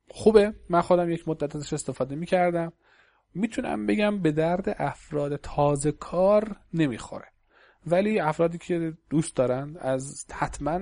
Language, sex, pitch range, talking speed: Persian, male, 130-170 Hz, 130 wpm